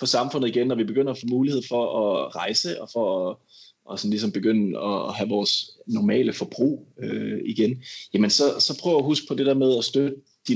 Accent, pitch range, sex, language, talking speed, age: native, 110-135 Hz, male, Danish, 220 wpm, 20-39